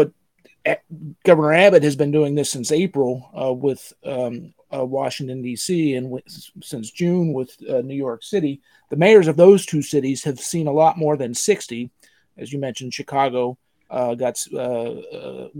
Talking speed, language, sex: 165 wpm, English, male